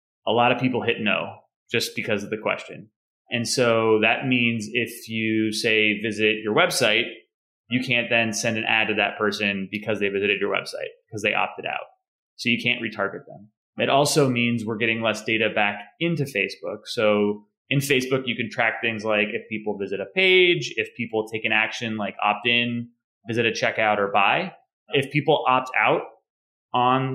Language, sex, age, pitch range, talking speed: English, male, 20-39, 110-130 Hz, 190 wpm